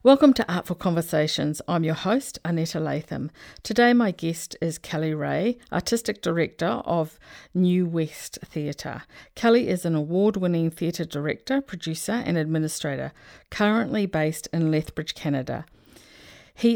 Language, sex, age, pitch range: English, female, 50-69, 155-215 Hz